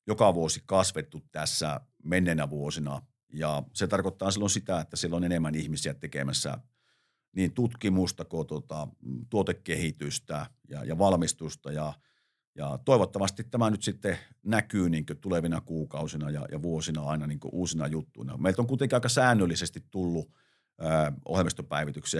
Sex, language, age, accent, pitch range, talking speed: male, Finnish, 50-69, native, 75-95 Hz, 125 wpm